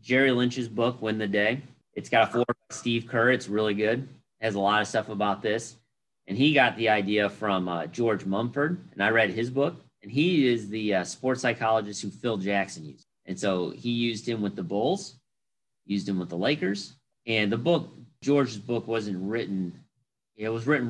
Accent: American